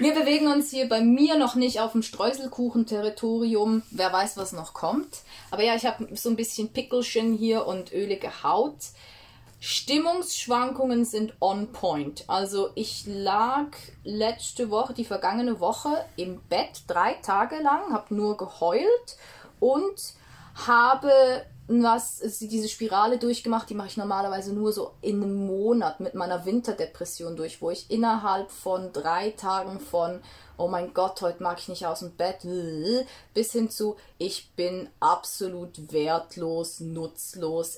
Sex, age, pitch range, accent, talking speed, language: female, 20-39, 175-235 Hz, German, 150 wpm, German